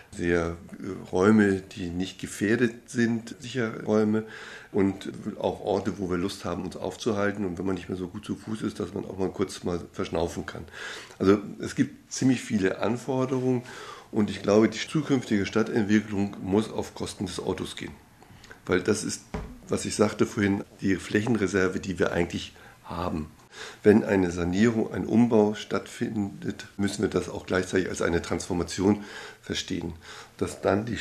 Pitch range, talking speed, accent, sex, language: 95-110 Hz, 165 wpm, German, male, German